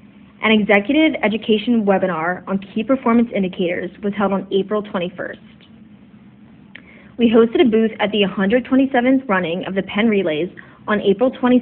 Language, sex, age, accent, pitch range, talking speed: English, female, 20-39, American, 195-225 Hz, 140 wpm